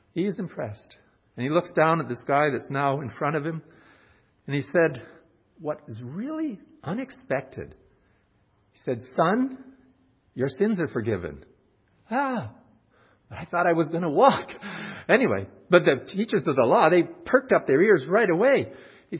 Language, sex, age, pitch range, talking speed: English, male, 50-69, 120-190 Hz, 165 wpm